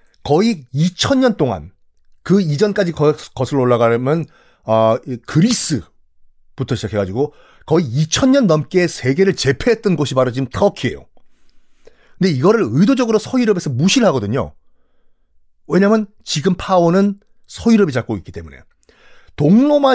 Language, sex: Korean, male